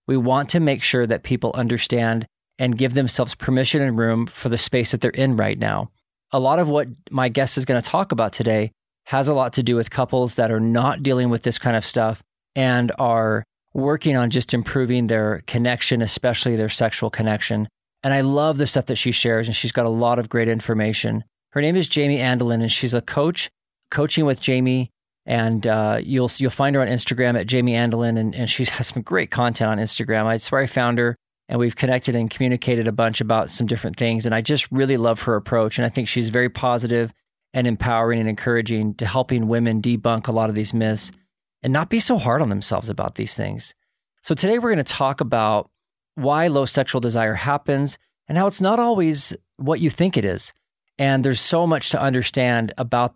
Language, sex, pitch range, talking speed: English, male, 115-135 Hz, 215 wpm